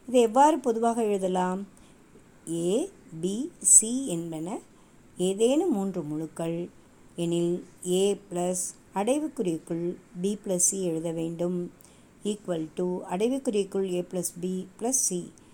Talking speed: 110 wpm